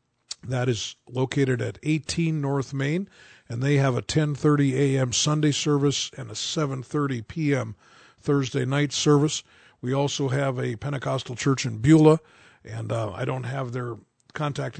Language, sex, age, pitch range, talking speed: English, male, 50-69, 125-145 Hz, 150 wpm